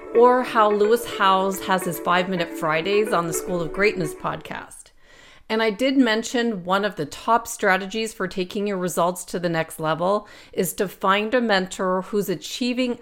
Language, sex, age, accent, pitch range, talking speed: English, female, 40-59, American, 175-220 Hz, 180 wpm